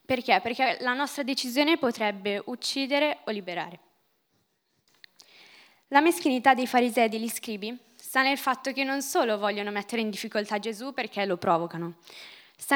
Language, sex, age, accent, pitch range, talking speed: Italian, female, 10-29, native, 220-280 Hz, 145 wpm